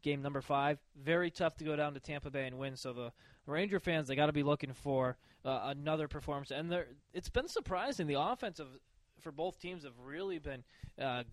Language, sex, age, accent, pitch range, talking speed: English, male, 20-39, American, 125-155 Hz, 205 wpm